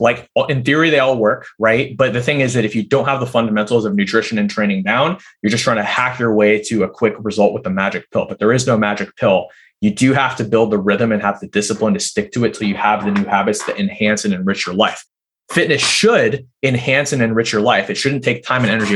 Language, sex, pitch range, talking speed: English, male, 105-130 Hz, 265 wpm